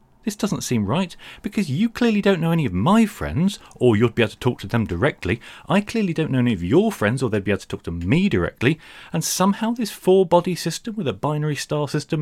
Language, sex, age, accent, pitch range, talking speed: English, male, 40-59, British, 120-200 Hz, 240 wpm